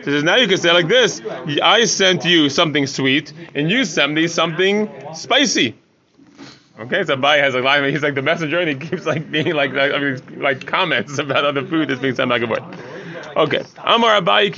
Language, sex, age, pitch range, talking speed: English, male, 30-49, 155-210 Hz, 195 wpm